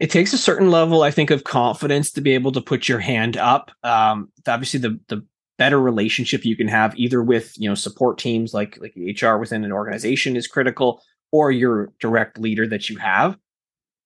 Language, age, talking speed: English, 20-39, 200 wpm